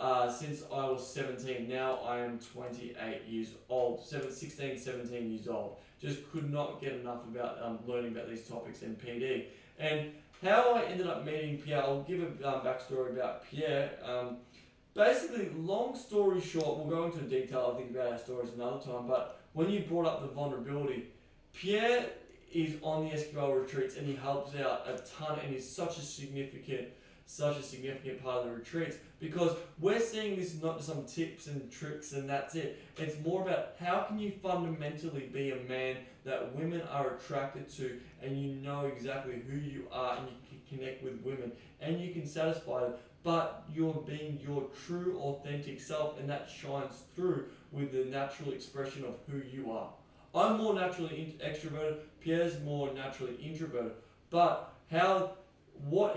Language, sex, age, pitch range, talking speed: English, male, 20-39, 130-160 Hz, 175 wpm